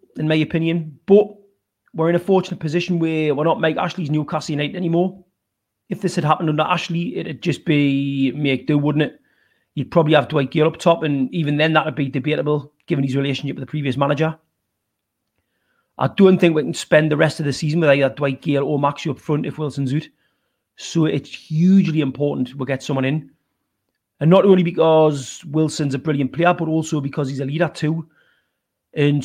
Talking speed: 200 wpm